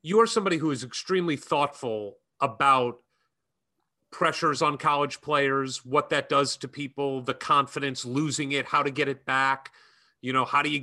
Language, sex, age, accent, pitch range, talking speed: English, male, 40-59, American, 130-165 Hz, 170 wpm